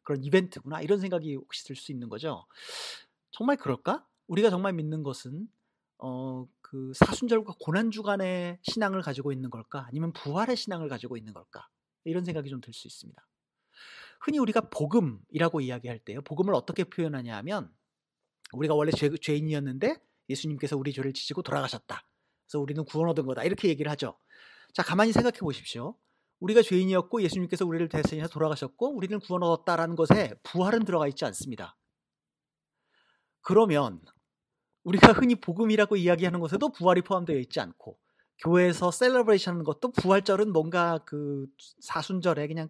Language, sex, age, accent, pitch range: Korean, male, 40-59, native, 145-200 Hz